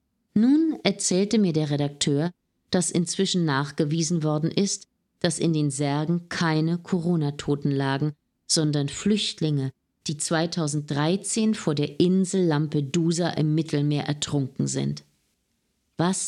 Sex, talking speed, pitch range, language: female, 110 wpm, 145-180 Hz, German